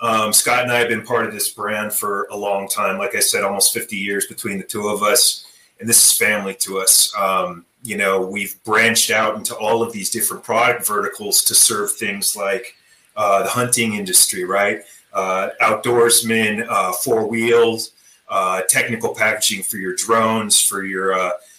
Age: 30-49